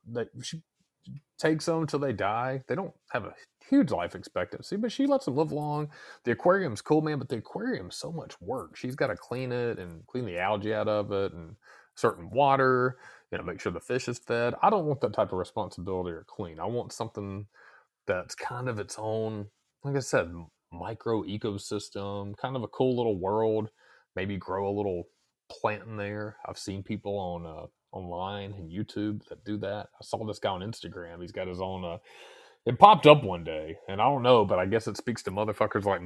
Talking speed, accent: 210 wpm, American